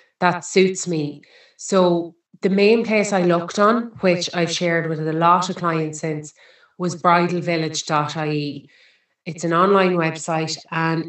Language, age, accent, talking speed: English, 30-49, Irish, 140 wpm